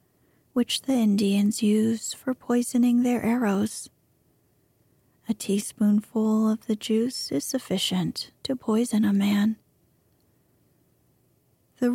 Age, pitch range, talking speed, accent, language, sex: 30-49, 210-245 Hz, 100 wpm, American, English, female